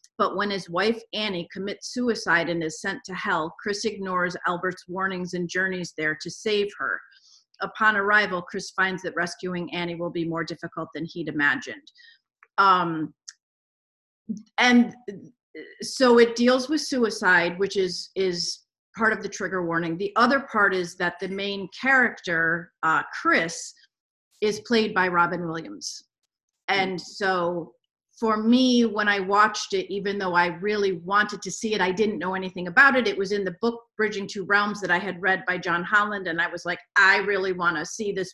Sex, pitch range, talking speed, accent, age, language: female, 180-215 Hz, 175 wpm, American, 40-59, English